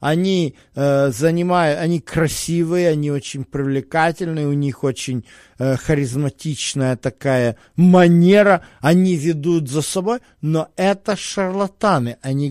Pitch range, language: 145-190 Hz, Russian